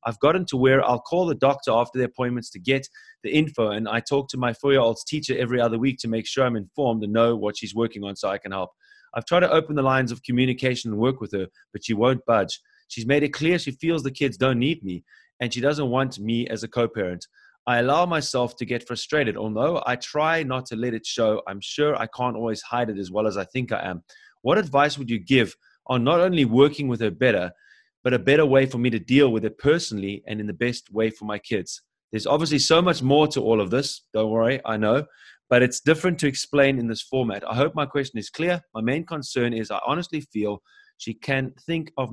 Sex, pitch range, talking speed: male, 110-140 Hz, 245 wpm